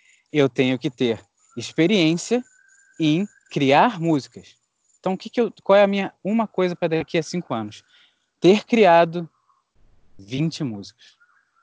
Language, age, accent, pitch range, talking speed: Portuguese, 20-39, Brazilian, 135-195 Hz, 145 wpm